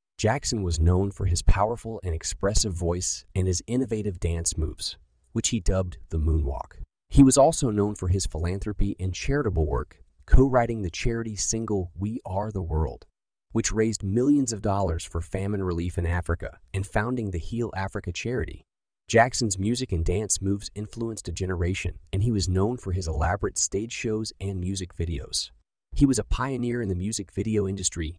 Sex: male